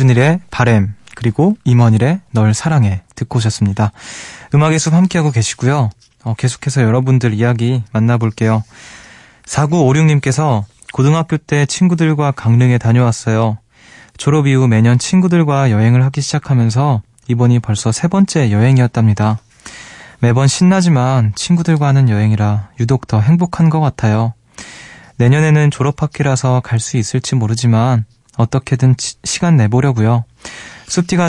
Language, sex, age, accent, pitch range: Korean, male, 20-39, native, 115-150 Hz